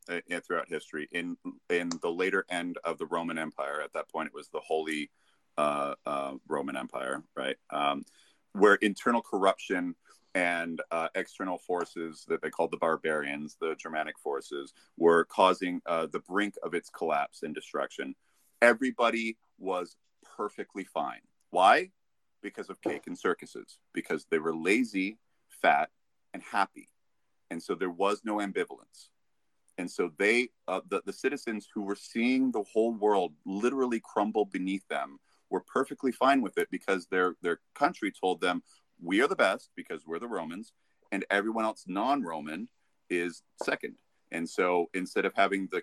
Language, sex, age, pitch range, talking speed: English, male, 30-49, 85-115 Hz, 160 wpm